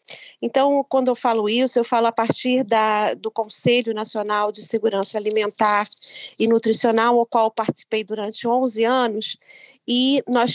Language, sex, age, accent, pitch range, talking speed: Portuguese, female, 40-59, Brazilian, 225-265 Hz, 155 wpm